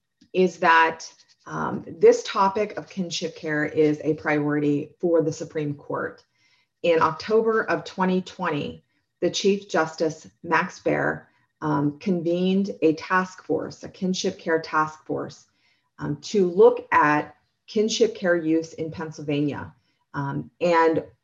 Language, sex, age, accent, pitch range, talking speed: English, female, 40-59, American, 150-185 Hz, 125 wpm